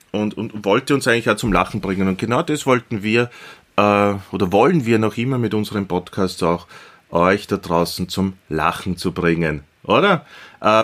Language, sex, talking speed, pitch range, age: German, male, 185 wpm, 95-120 Hz, 30-49